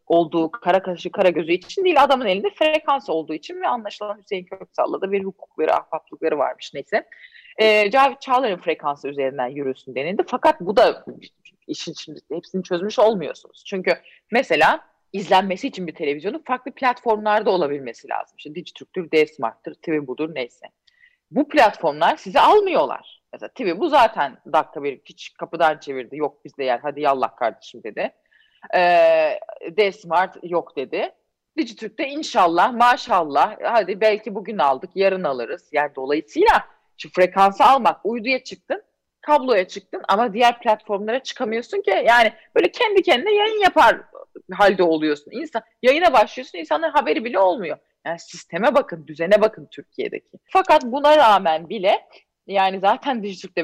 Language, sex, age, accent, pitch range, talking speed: Turkish, female, 30-49, native, 170-285 Hz, 140 wpm